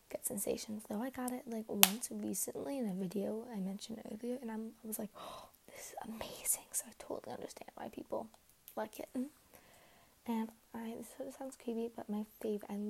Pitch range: 205-235 Hz